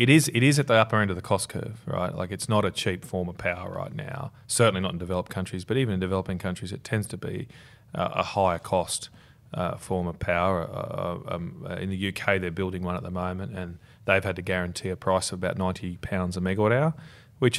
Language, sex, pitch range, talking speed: English, male, 90-120 Hz, 245 wpm